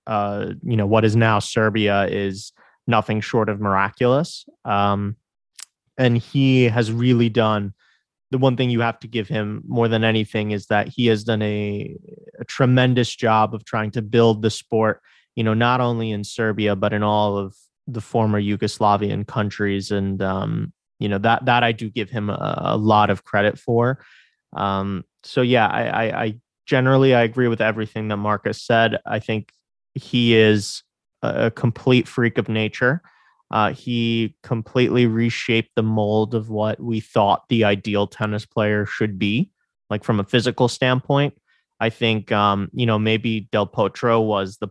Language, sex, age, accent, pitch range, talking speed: English, male, 20-39, American, 105-120 Hz, 170 wpm